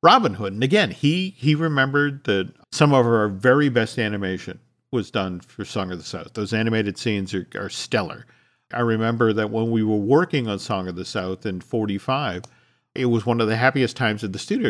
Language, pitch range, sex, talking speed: English, 110-145 Hz, male, 210 wpm